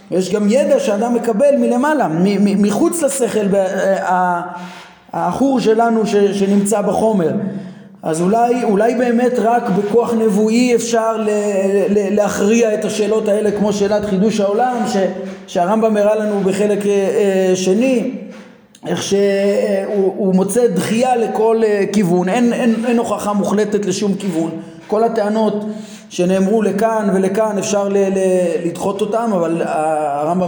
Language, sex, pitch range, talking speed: Hebrew, male, 185-220 Hz, 110 wpm